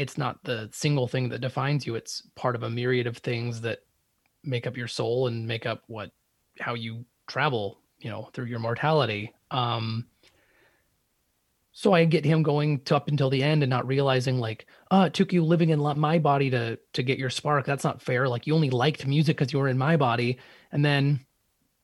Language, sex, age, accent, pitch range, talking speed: English, male, 30-49, American, 120-145 Hz, 210 wpm